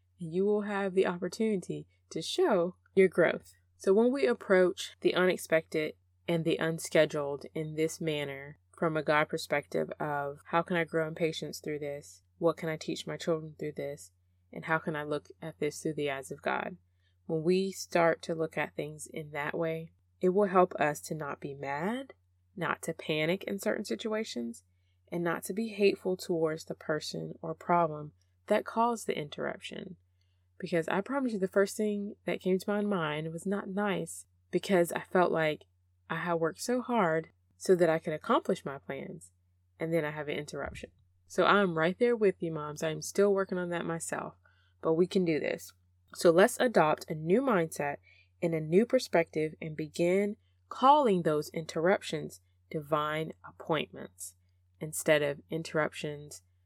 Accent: American